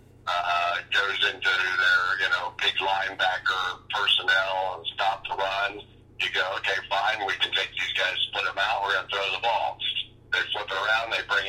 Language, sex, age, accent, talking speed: English, male, 50-69, American, 195 wpm